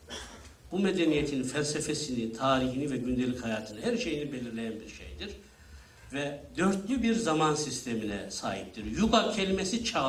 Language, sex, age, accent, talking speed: Turkish, male, 60-79, native, 125 wpm